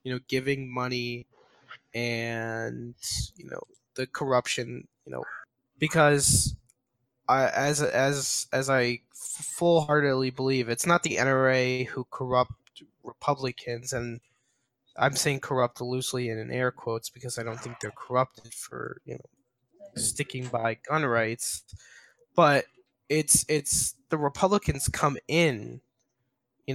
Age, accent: 20-39, American